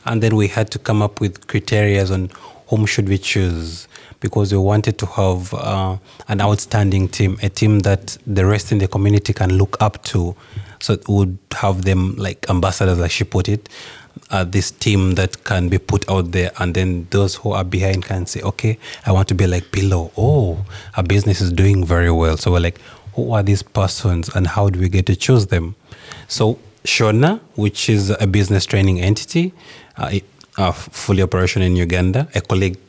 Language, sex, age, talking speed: English, male, 30-49, 195 wpm